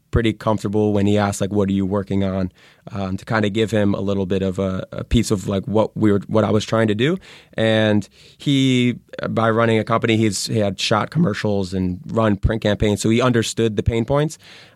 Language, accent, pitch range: English, American, 100-110 Hz